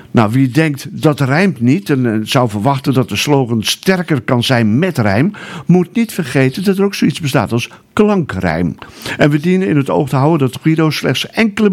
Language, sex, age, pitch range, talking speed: Dutch, male, 50-69, 125-170 Hz, 200 wpm